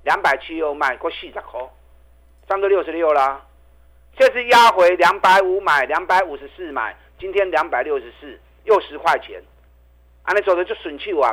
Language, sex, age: Chinese, male, 50-69